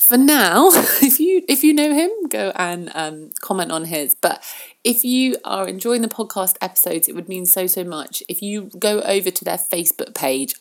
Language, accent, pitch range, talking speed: English, British, 160-230 Hz, 205 wpm